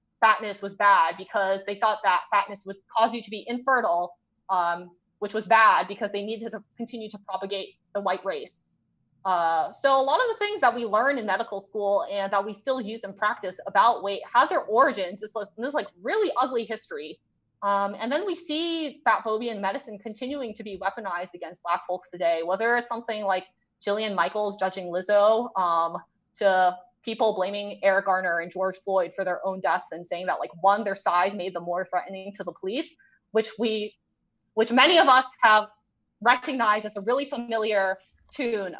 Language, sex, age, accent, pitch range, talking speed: English, female, 20-39, American, 190-235 Hz, 190 wpm